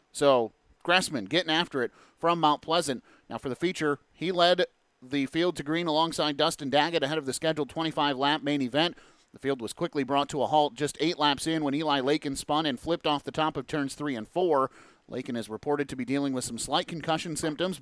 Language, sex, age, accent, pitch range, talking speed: English, male, 30-49, American, 135-175 Hz, 220 wpm